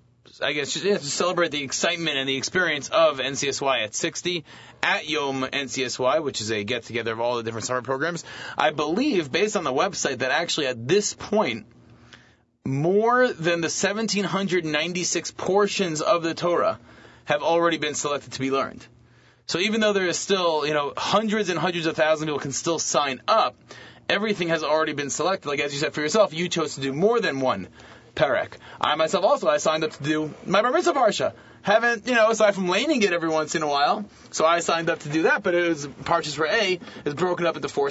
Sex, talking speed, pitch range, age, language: male, 210 wpm, 135-180 Hz, 30-49, English